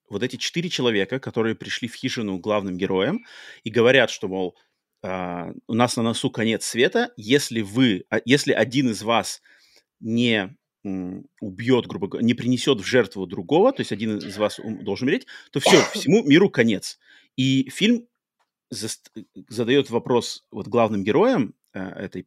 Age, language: 30-49, Russian